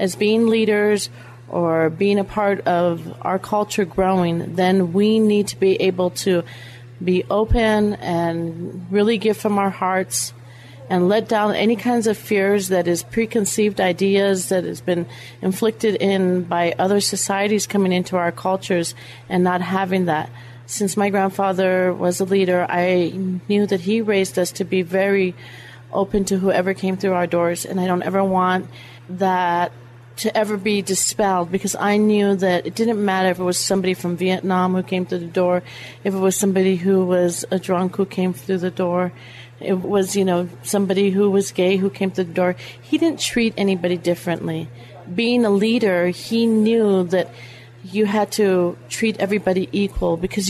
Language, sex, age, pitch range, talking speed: English, female, 40-59, 175-200 Hz, 175 wpm